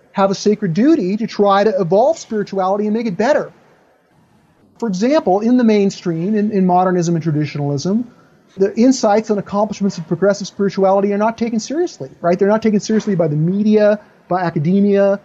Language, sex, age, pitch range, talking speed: English, male, 40-59, 170-210 Hz, 175 wpm